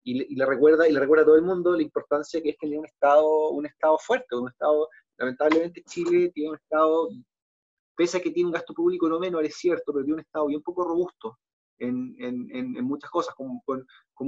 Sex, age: male, 30-49